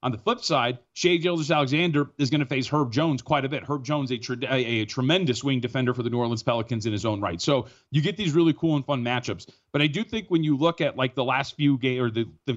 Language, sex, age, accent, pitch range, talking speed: English, male, 30-49, American, 125-160 Hz, 280 wpm